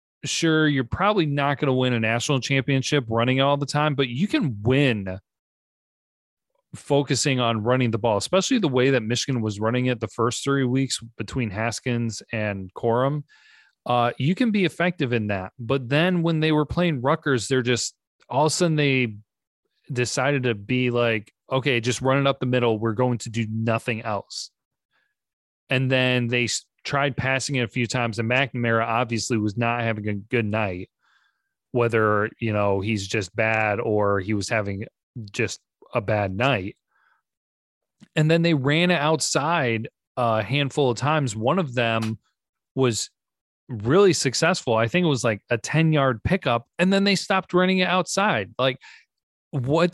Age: 30-49